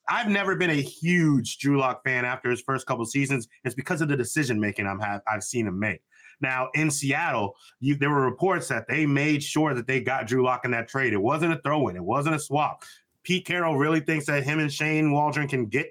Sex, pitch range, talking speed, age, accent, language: male, 125-160 Hz, 235 wpm, 30-49, American, English